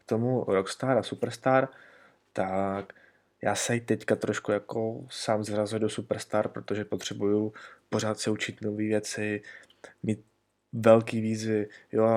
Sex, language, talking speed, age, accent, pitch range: male, Czech, 125 wpm, 20-39, native, 100-115 Hz